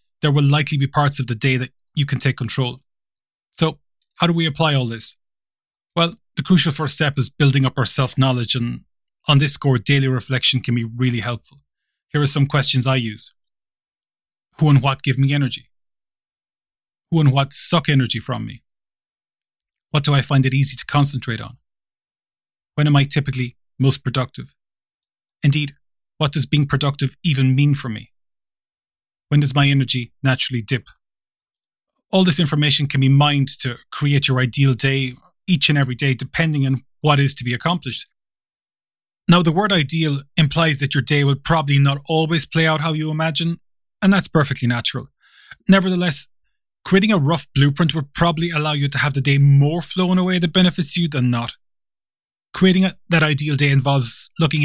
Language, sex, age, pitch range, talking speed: English, male, 30-49, 130-155 Hz, 175 wpm